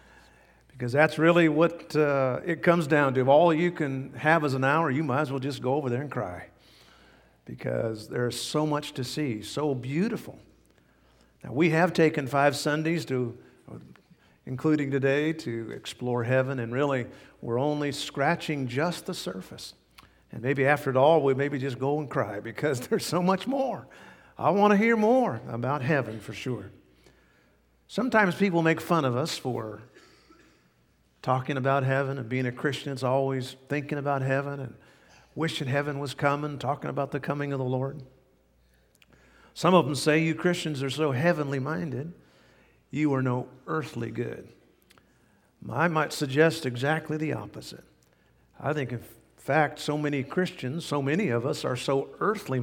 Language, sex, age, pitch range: English, male, 50-69, 125-155 Hz